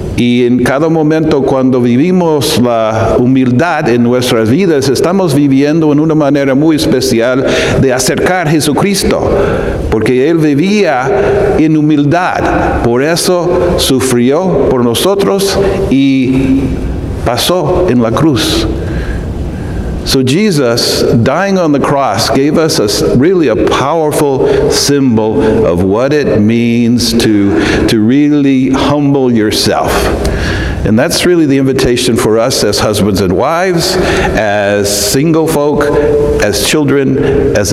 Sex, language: male, English